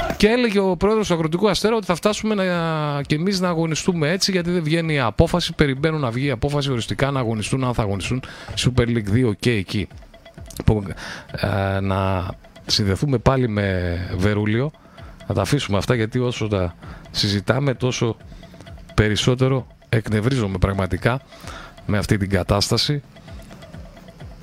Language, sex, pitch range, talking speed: Greek, male, 100-140 Hz, 145 wpm